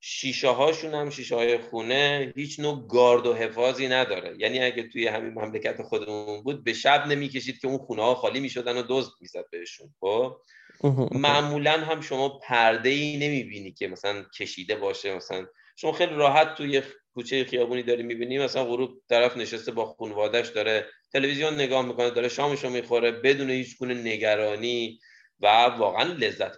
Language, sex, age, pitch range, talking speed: Persian, male, 30-49, 115-145 Hz, 165 wpm